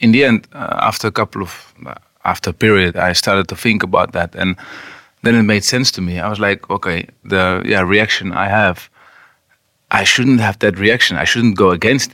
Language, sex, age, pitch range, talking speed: English, male, 30-49, 95-115 Hz, 215 wpm